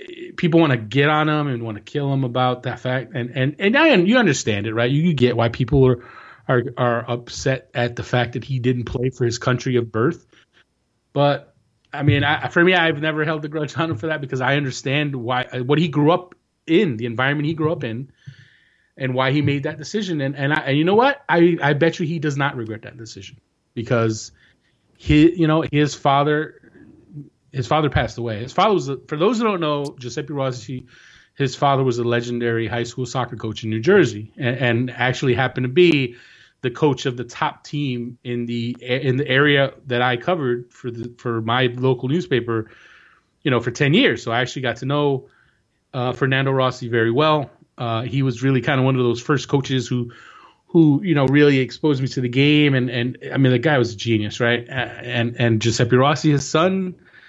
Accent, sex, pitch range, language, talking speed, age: American, male, 120-150 Hz, English, 215 wpm, 30-49